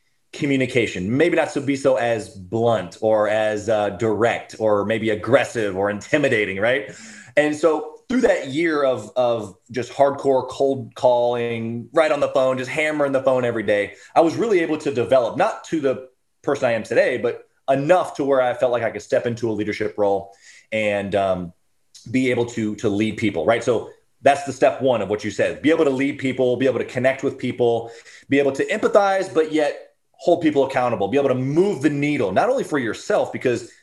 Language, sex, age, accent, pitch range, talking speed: English, male, 30-49, American, 110-155 Hz, 205 wpm